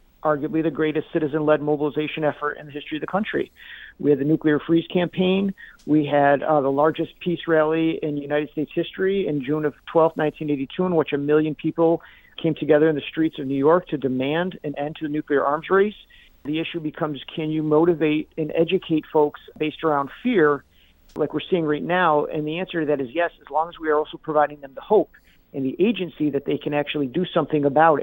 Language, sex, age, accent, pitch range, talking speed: English, male, 50-69, American, 150-175 Hz, 215 wpm